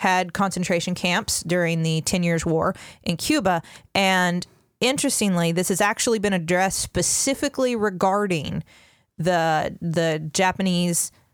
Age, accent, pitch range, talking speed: 30-49, American, 165-190 Hz, 115 wpm